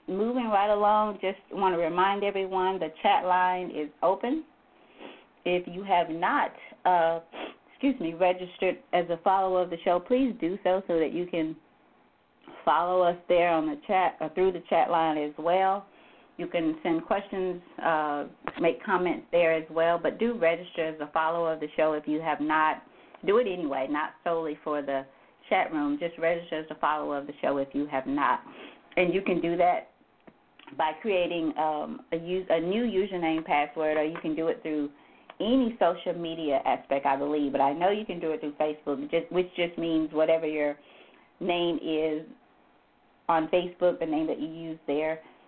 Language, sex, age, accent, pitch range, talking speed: English, female, 30-49, American, 155-185 Hz, 185 wpm